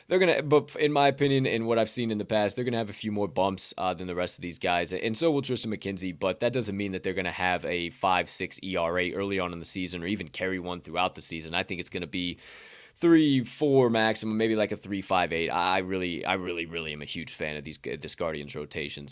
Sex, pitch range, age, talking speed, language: male, 95-135 Hz, 20-39, 260 wpm, English